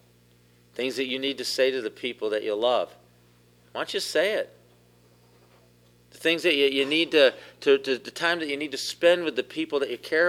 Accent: American